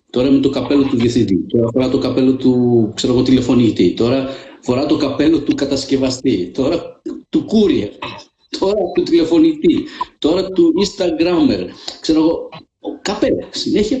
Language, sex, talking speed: Greek, male, 135 wpm